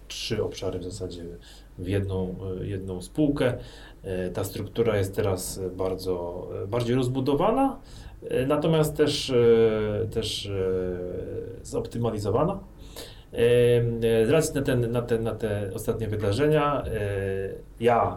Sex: male